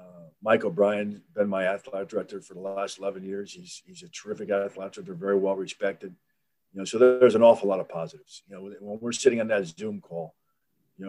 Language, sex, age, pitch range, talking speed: English, male, 40-59, 95-120 Hz, 210 wpm